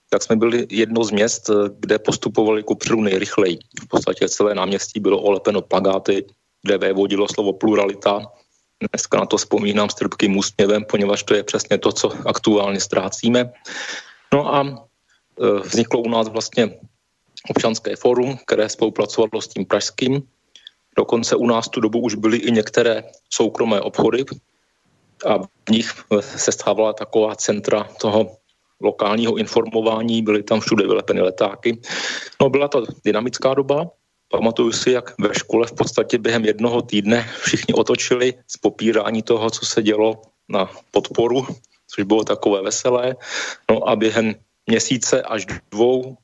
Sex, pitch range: male, 105-120 Hz